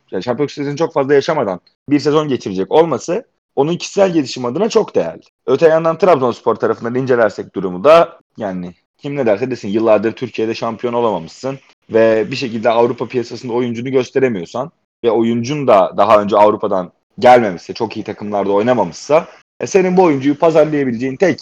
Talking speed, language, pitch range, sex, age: 155 wpm, Turkish, 120-175 Hz, male, 30-49